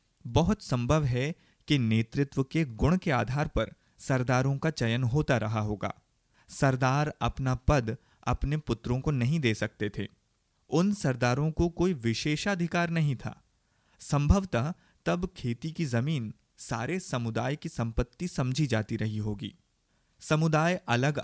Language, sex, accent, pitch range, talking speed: Hindi, male, native, 115-150 Hz, 135 wpm